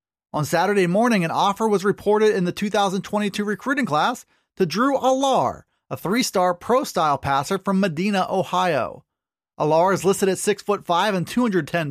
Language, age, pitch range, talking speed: English, 30-49, 170-220 Hz, 145 wpm